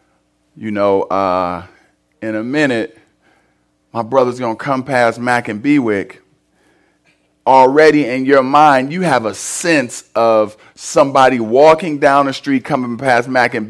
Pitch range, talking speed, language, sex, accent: 105-150 Hz, 140 wpm, English, male, American